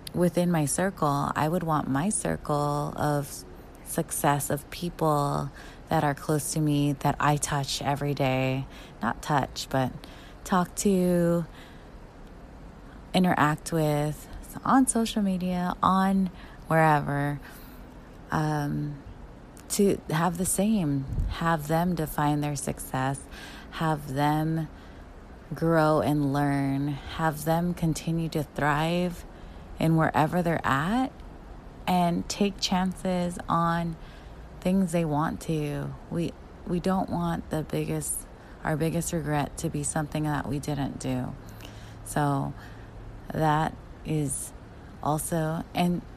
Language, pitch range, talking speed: English, 140-170 Hz, 115 wpm